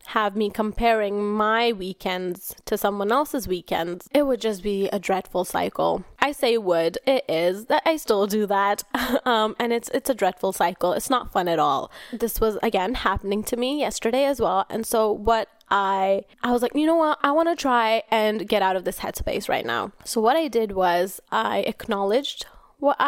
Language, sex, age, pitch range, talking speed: English, female, 10-29, 200-255 Hz, 200 wpm